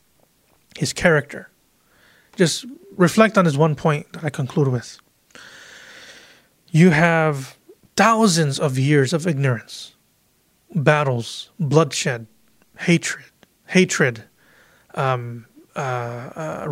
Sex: male